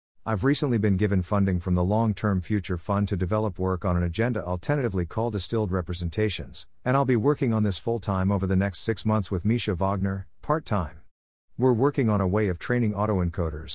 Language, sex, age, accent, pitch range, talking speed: English, male, 50-69, American, 90-115 Hz, 205 wpm